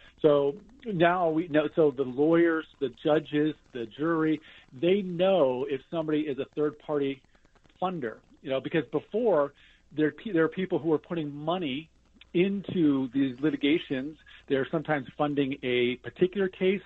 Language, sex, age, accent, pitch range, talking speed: English, male, 40-59, American, 140-180 Hz, 140 wpm